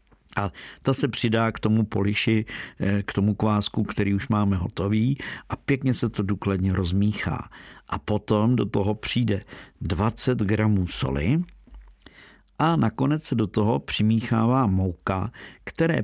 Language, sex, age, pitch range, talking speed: Czech, male, 50-69, 95-115 Hz, 135 wpm